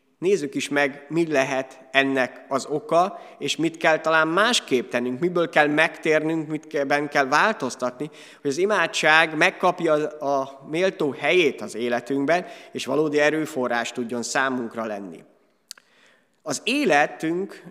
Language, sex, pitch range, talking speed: Hungarian, male, 125-160 Hz, 125 wpm